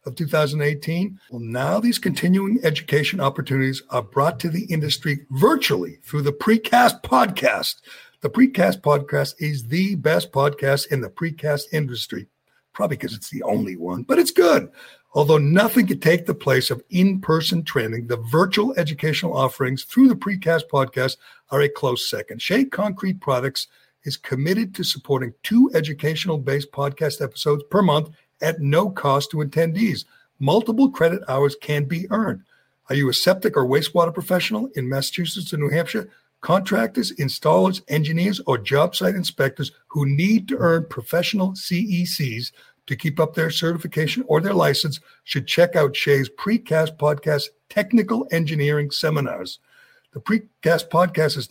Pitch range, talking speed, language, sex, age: 140-190 Hz, 150 wpm, English, male, 60-79